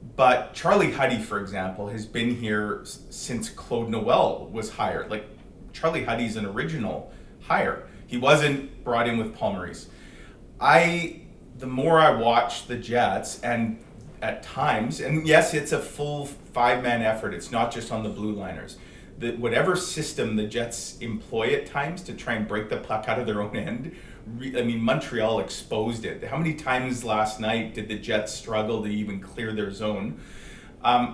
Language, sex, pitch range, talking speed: English, male, 110-140 Hz, 170 wpm